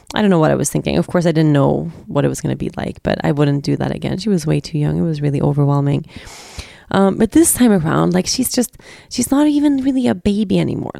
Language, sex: English, female